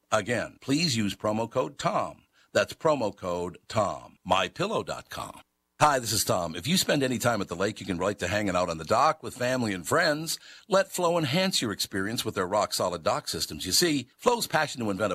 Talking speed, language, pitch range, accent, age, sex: 205 wpm, English, 95-130 Hz, American, 60-79, male